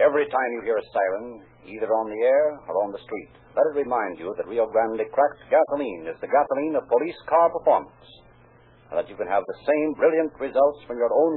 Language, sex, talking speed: English, male, 220 wpm